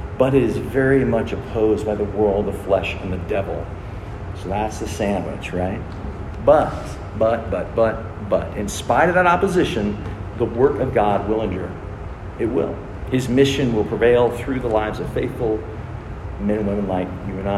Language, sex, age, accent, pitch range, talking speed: English, male, 50-69, American, 100-120 Hz, 180 wpm